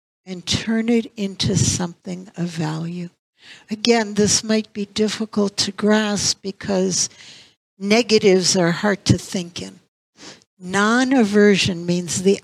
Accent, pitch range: American, 175-210 Hz